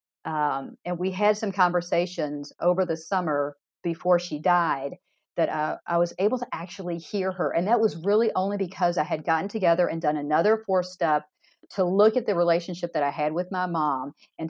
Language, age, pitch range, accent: English, 50-69, 165-210 Hz, American